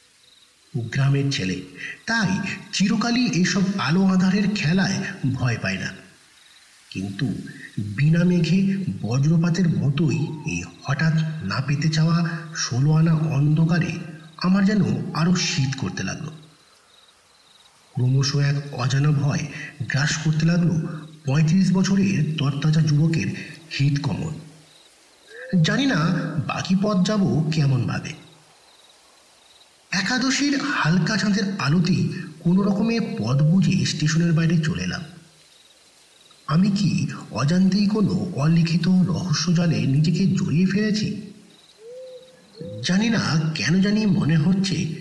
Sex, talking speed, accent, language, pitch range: male, 55 wpm, native, Bengali, 155-190 Hz